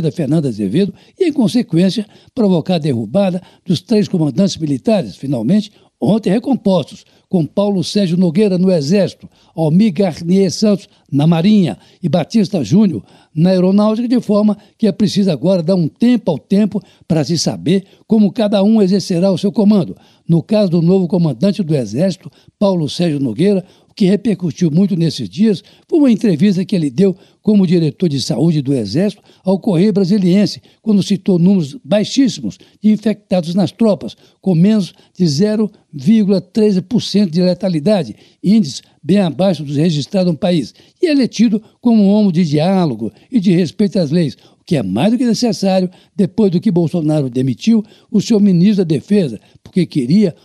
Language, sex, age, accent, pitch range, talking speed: Portuguese, male, 60-79, Brazilian, 170-210 Hz, 165 wpm